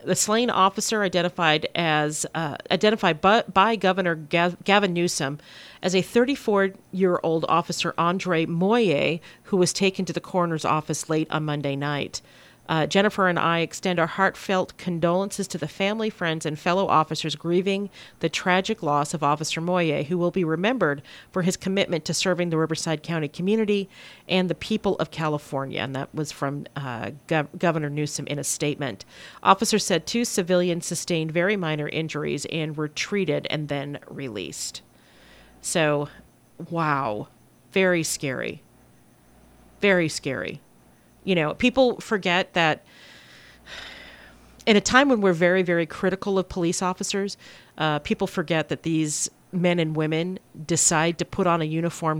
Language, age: English, 40-59